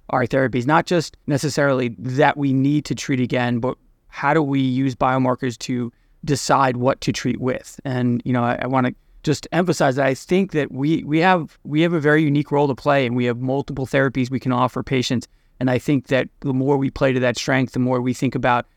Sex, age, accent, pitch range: male, 20-39, American, 125-140 Hz